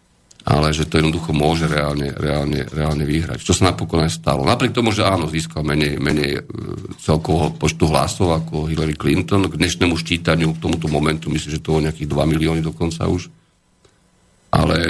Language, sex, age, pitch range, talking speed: Slovak, male, 50-69, 80-90 Hz, 175 wpm